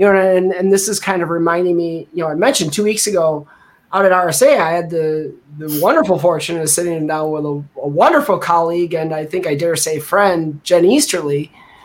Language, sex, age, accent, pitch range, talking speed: English, male, 30-49, American, 165-210 Hz, 220 wpm